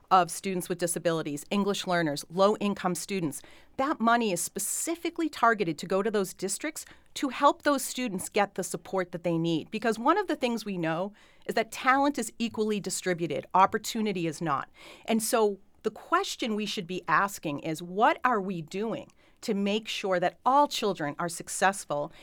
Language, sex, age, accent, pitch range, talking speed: English, female, 40-59, American, 180-235 Hz, 180 wpm